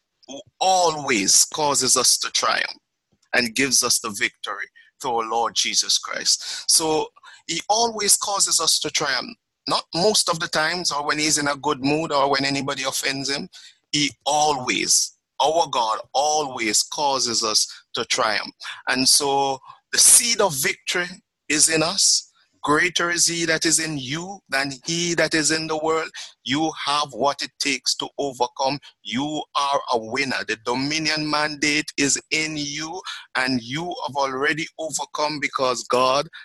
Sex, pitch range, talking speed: male, 135-160 Hz, 160 wpm